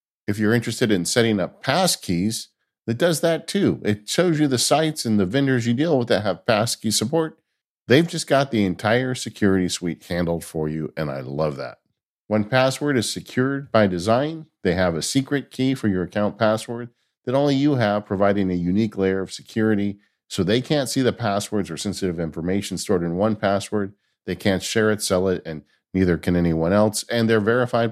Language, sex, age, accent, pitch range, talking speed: English, male, 50-69, American, 95-125 Hz, 200 wpm